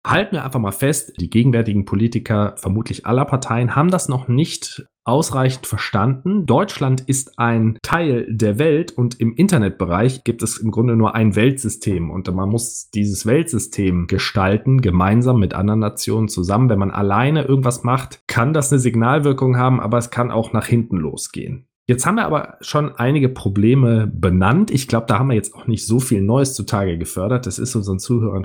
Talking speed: 180 wpm